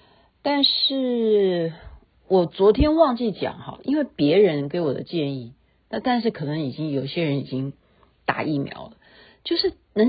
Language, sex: Chinese, female